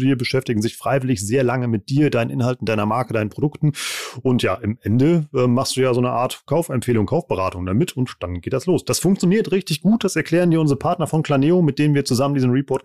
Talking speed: 235 wpm